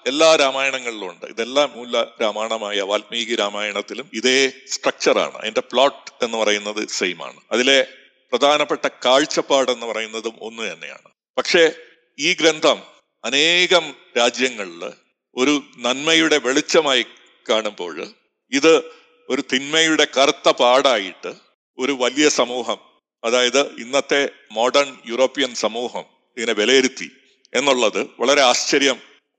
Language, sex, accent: Malayalam, male, native